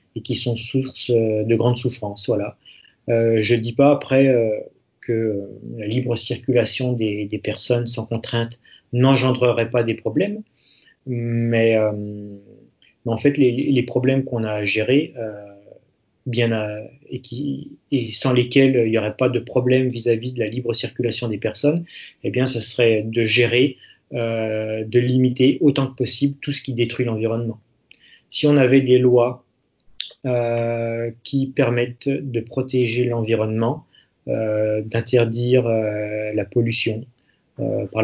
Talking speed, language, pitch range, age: 145 wpm, French, 110-130 Hz, 30-49